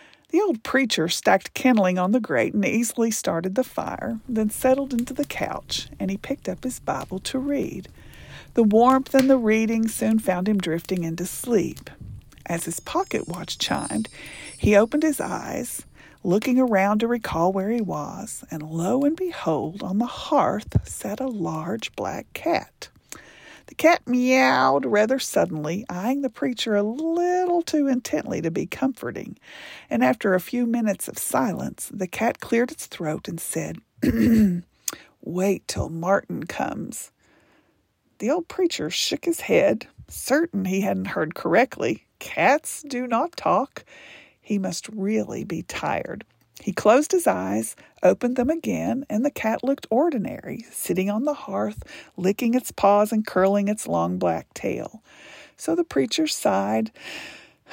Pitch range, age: 195-270 Hz, 50-69